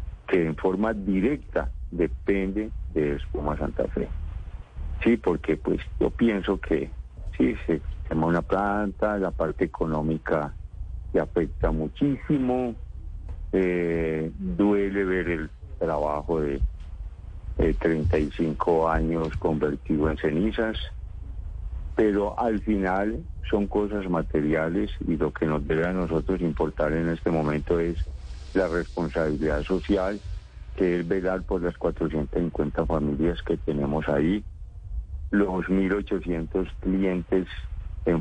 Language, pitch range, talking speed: Spanish, 80-95 Hz, 115 wpm